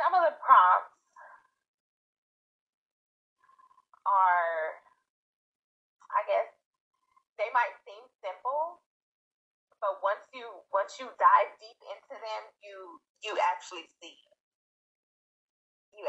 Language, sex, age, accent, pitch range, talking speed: English, female, 30-49, American, 185-310 Hz, 95 wpm